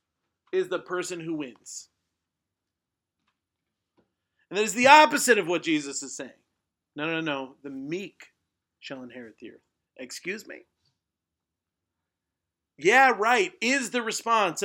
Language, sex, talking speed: English, male, 125 wpm